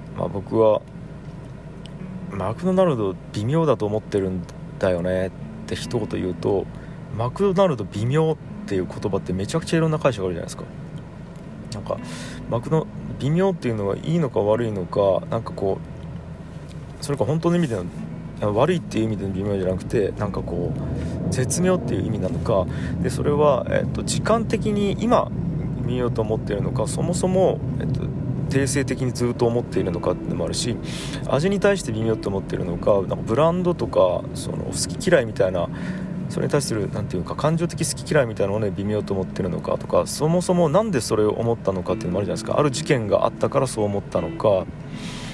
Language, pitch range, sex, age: Japanese, 105-160 Hz, male, 40-59